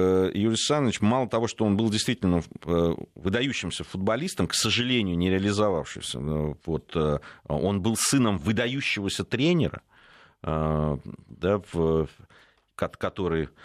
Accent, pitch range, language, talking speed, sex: native, 90-140 Hz, Russian, 100 wpm, male